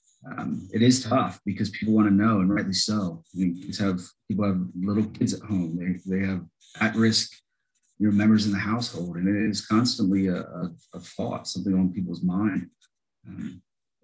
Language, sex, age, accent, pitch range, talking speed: English, male, 30-49, American, 95-110 Hz, 190 wpm